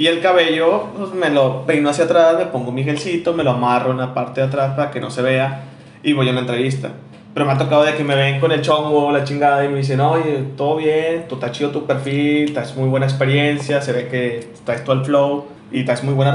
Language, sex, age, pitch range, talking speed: Spanish, male, 20-39, 130-150 Hz, 255 wpm